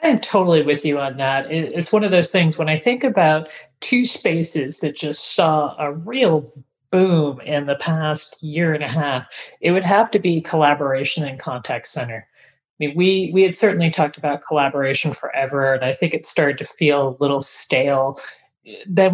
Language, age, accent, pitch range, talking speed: English, 30-49, American, 135-160 Hz, 190 wpm